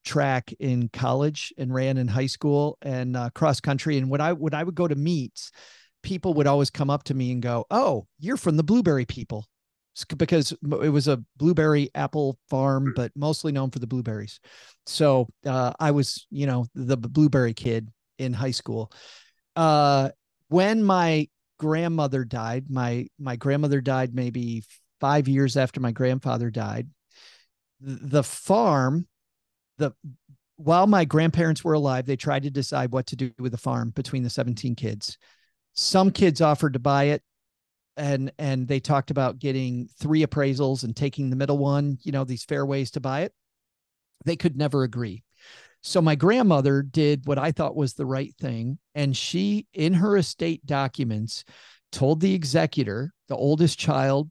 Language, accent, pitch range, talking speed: English, American, 130-155 Hz, 170 wpm